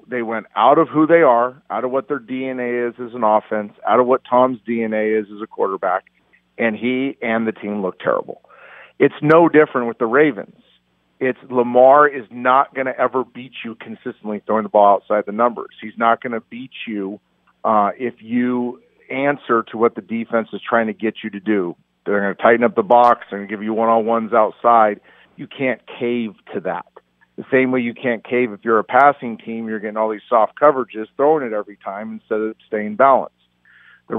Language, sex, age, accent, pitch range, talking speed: English, male, 50-69, American, 110-130 Hz, 210 wpm